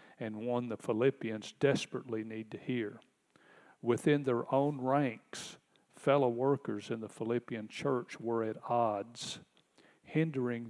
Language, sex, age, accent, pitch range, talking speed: English, male, 50-69, American, 115-130 Hz, 125 wpm